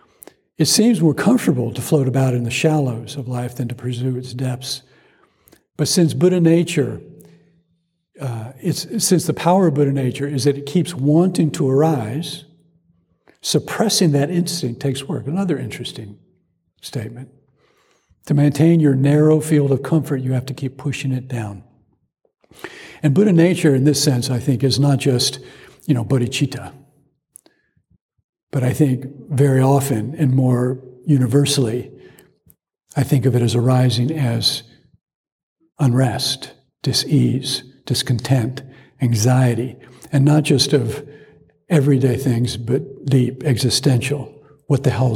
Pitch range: 125-150 Hz